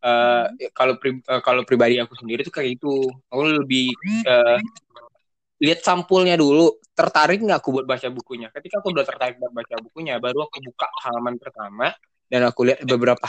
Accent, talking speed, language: native, 175 wpm, Indonesian